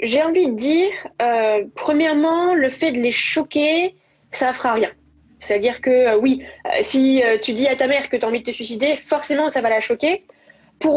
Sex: female